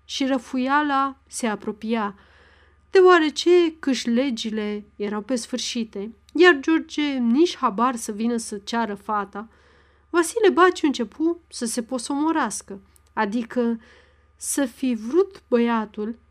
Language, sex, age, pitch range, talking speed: Romanian, female, 30-49, 215-280 Hz, 105 wpm